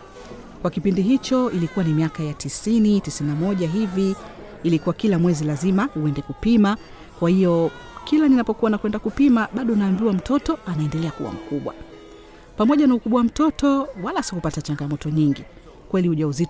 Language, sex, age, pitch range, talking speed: Swahili, female, 40-59, 150-220 Hz, 135 wpm